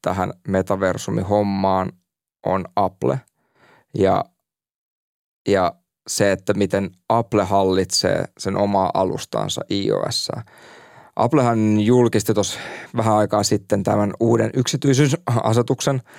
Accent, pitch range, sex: native, 95-110 Hz, male